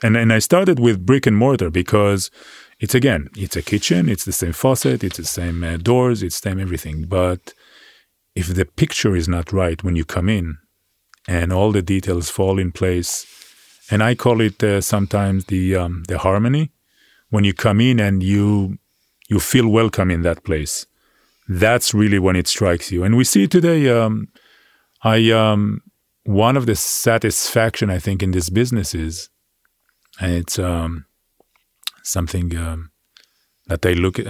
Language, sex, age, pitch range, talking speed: English, male, 40-59, 85-110 Hz, 175 wpm